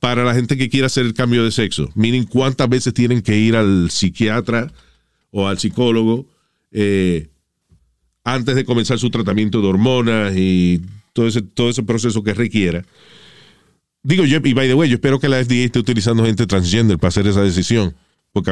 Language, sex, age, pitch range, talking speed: Spanish, male, 40-59, 105-130 Hz, 185 wpm